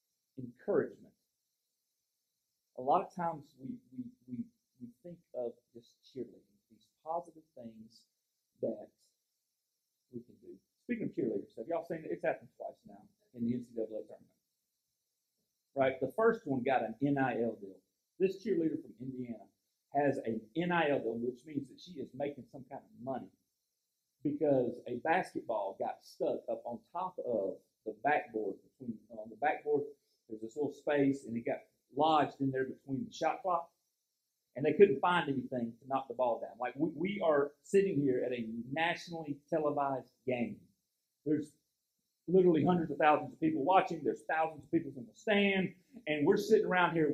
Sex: male